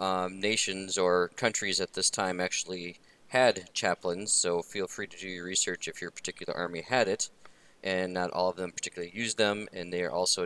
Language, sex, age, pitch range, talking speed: English, male, 20-39, 85-100 Hz, 200 wpm